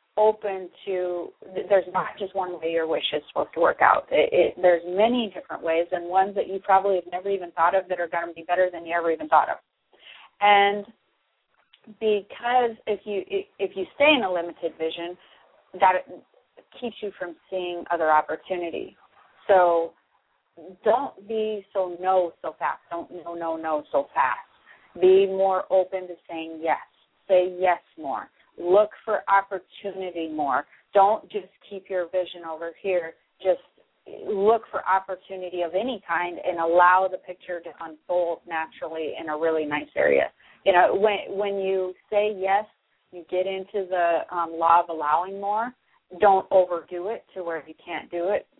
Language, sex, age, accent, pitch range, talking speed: English, female, 30-49, American, 170-205 Hz, 170 wpm